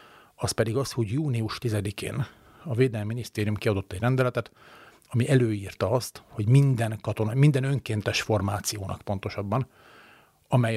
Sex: male